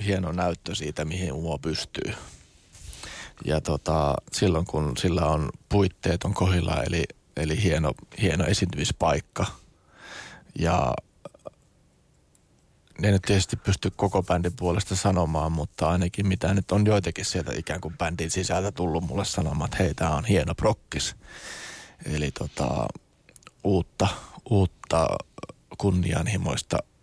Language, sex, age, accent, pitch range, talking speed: Finnish, male, 30-49, native, 80-100 Hz, 120 wpm